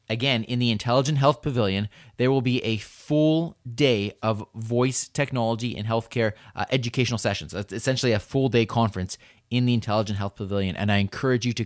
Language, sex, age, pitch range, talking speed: English, male, 30-49, 110-145 Hz, 180 wpm